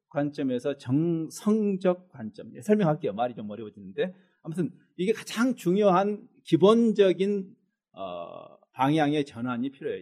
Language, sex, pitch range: Korean, male, 150-215 Hz